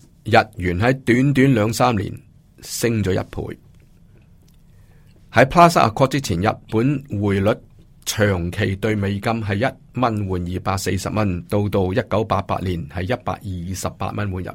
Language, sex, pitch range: Chinese, male, 95-125 Hz